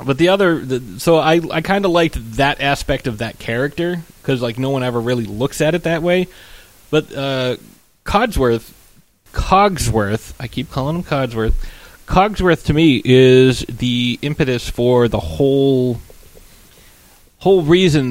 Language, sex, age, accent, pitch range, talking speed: English, male, 30-49, American, 115-150 Hz, 150 wpm